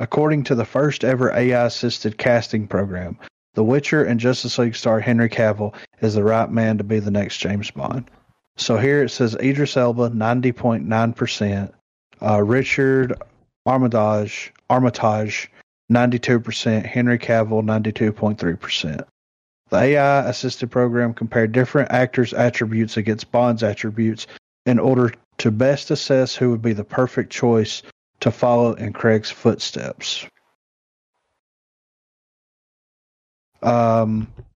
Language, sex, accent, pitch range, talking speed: English, male, American, 110-125 Hz, 115 wpm